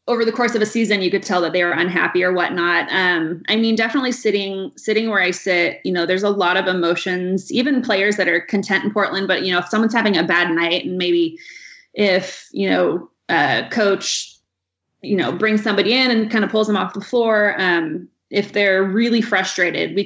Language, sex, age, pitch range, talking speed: English, female, 20-39, 175-215 Hz, 220 wpm